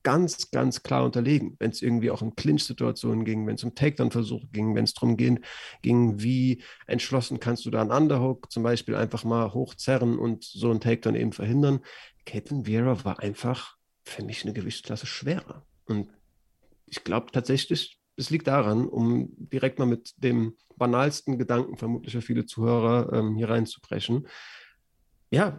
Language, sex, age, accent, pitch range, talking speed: German, male, 40-59, German, 110-130 Hz, 165 wpm